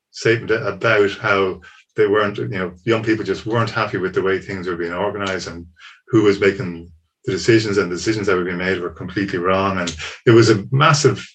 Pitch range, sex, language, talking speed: 95-135 Hz, male, English, 205 wpm